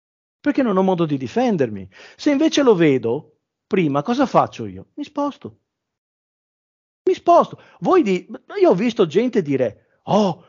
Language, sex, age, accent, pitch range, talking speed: Italian, male, 40-59, native, 140-215 Hz, 150 wpm